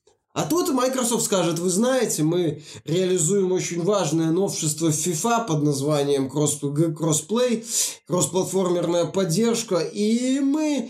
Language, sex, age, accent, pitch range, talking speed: Russian, male, 20-39, native, 170-225 Hz, 105 wpm